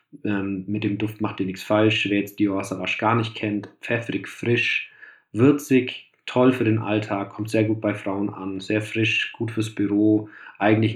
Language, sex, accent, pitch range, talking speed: German, male, German, 95-115 Hz, 185 wpm